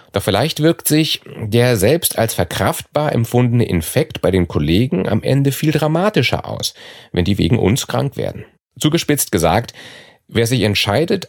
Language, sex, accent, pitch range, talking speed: German, male, German, 100-145 Hz, 155 wpm